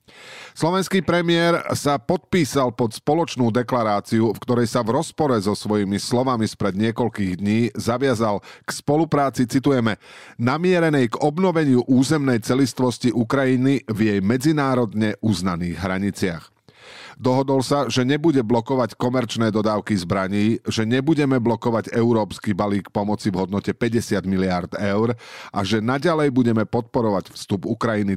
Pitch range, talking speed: 105-135 Hz, 125 wpm